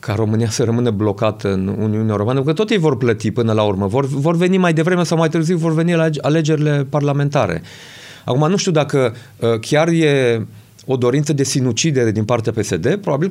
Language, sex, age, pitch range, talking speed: Romanian, male, 30-49, 110-140 Hz, 205 wpm